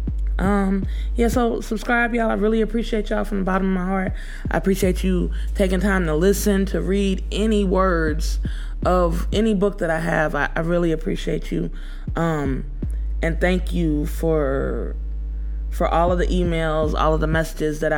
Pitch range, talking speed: 155-190 Hz, 175 wpm